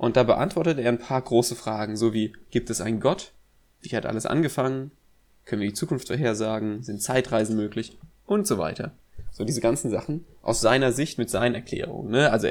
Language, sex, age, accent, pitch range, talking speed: German, male, 20-39, German, 115-140 Hz, 195 wpm